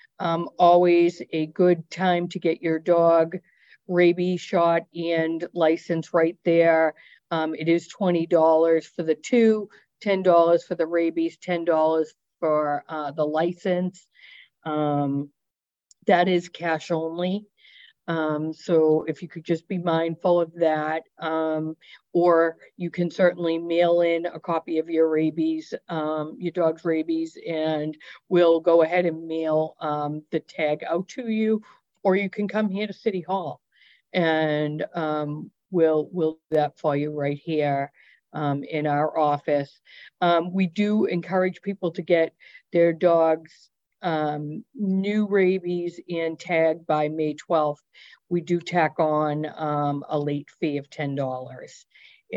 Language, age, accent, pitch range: English, 50-69, American, 155-180 Hz